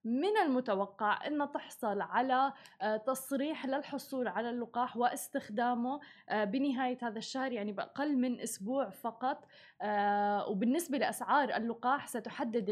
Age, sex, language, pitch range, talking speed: 20-39, female, Arabic, 215-275 Hz, 105 wpm